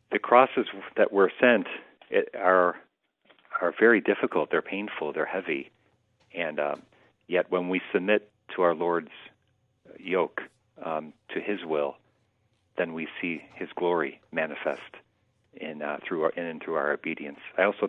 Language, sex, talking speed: English, male, 150 wpm